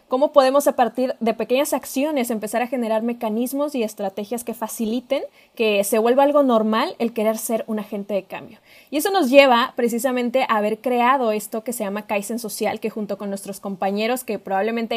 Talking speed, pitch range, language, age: 190 wpm, 220-265 Hz, Spanish, 20-39